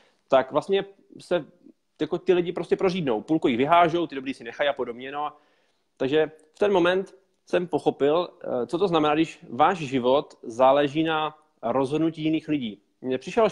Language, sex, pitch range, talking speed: Slovak, male, 135-175 Hz, 170 wpm